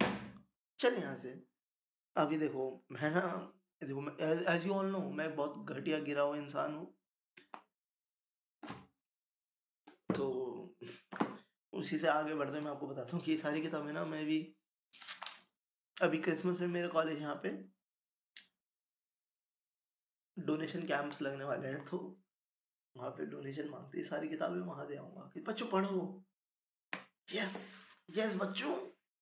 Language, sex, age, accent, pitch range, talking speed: Hindi, male, 20-39, native, 140-185 Hz, 120 wpm